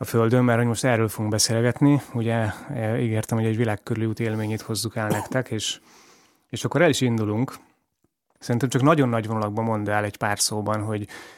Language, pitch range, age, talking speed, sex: Hungarian, 105-125 Hz, 20-39, 165 wpm, male